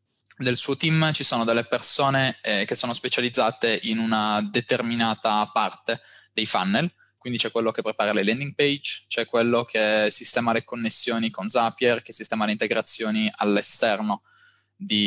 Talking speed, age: 155 wpm, 20-39